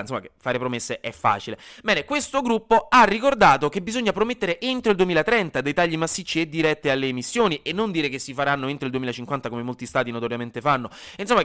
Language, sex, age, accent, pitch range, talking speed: Italian, male, 20-39, native, 125-195 Hz, 205 wpm